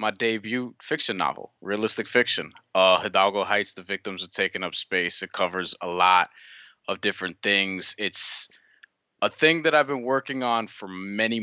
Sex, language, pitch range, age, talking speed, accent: male, English, 100-125 Hz, 20-39, 170 wpm, American